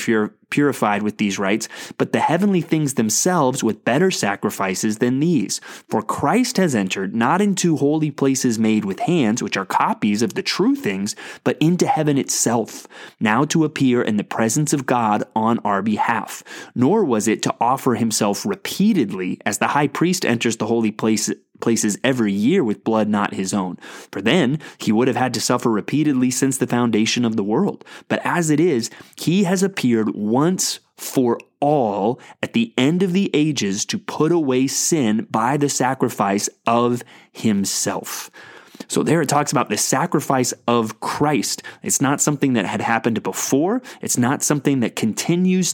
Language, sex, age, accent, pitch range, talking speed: English, male, 20-39, American, 110-155 Hz, 170 wpm